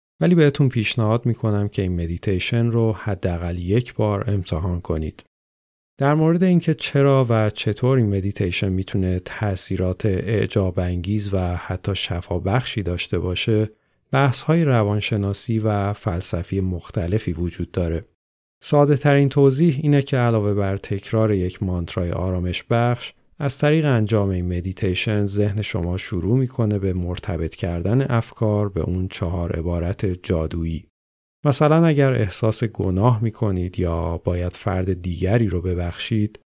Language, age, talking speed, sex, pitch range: Persian, 40-59, 130 wpm, male, 90-115 Hz